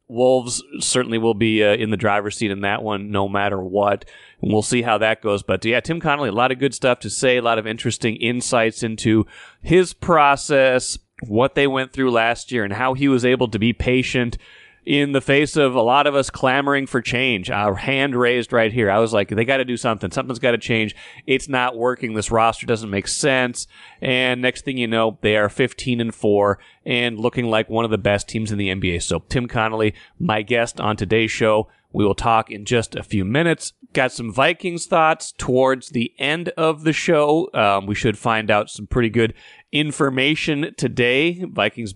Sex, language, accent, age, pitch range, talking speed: male, English, American, 30-49, 105-130 Hz, 210 wpm